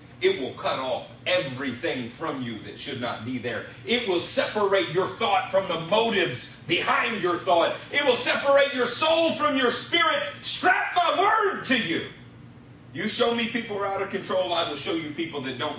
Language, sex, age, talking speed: English, male, 40-59, 200 wpm